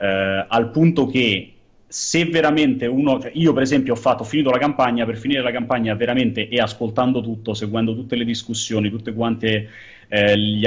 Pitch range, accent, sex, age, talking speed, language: 105-135 Hz, native, male, 30-49, 180 wpm, Italian